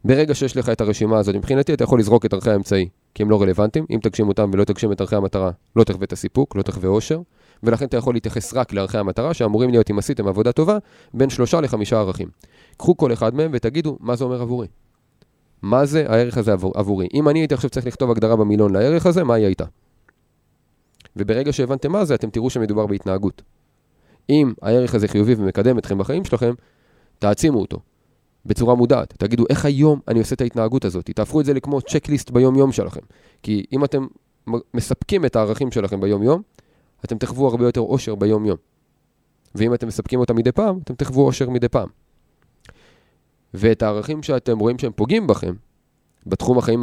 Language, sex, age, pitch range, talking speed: Hebrew, male, 30-49, 105-135 Hz, 165 wpm